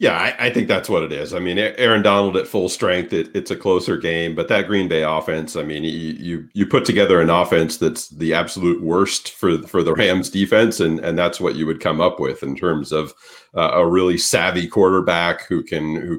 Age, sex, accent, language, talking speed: 40-59, male, American, English, 235 wpm